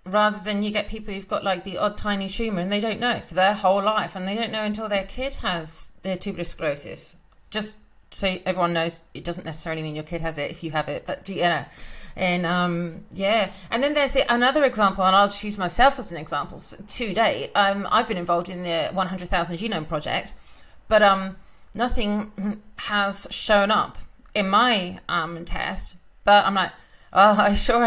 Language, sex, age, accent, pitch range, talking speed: English, female, 30-49, British, 175-215 Hz, 200 wpm